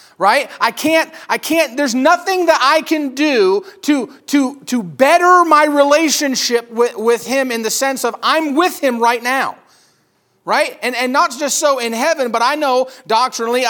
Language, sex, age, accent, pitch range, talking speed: English, male, 40-59, American, 225-295 Hz, 175 wpm